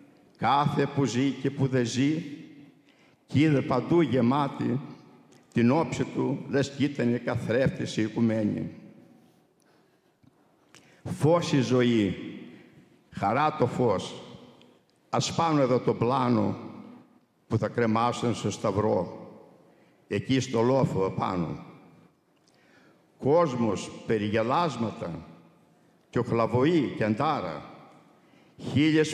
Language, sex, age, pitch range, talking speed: English, male, 60-79, 120-150 Hz, 95 wpm